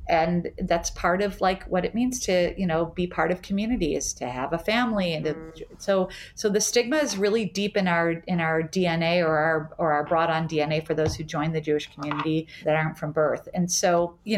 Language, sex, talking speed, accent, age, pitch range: English, female, 225 wpm, American, 40-59, 165-205 Hz